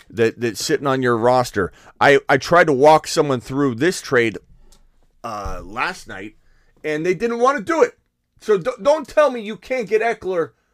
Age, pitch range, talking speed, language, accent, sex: 30-49, 135-190 Hz, 190 wpm, English, American, male